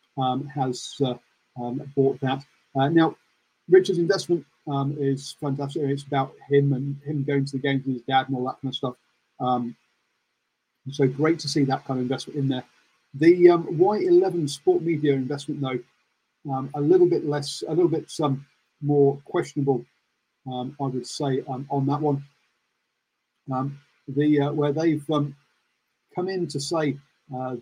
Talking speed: 175 wpm